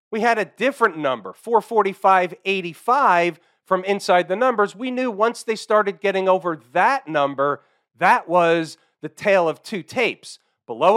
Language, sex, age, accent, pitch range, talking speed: English, male, 40-59, American, 170-215 Hz, 150 wpm